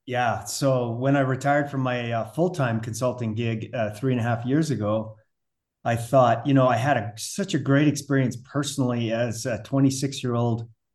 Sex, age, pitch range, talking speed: male, 30-49, 115-135 Hz, 175 wpm